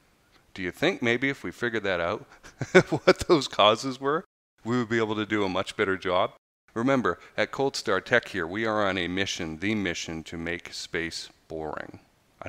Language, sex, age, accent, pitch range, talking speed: English, male, 40-59, American, 90-110 Hz, 195 wpm